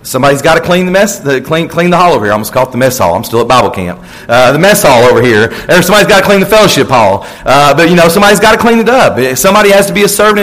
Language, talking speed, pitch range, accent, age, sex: English, 305 wpm, 150-200 Hz, American, 40-59, male